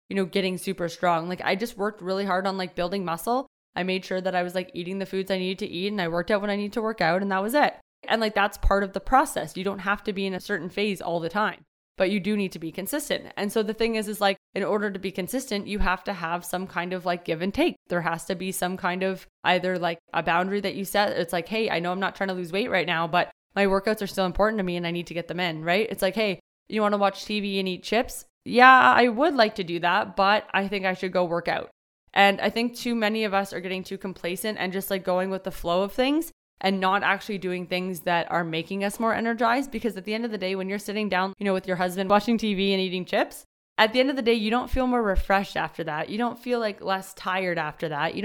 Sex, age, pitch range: female, 20-39, 185-215 Hz